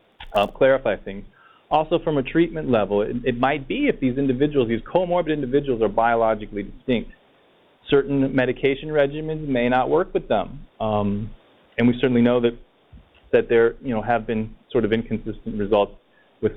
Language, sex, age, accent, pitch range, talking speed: English, male, 30-49, American, 110-130 Hz, 170 wpm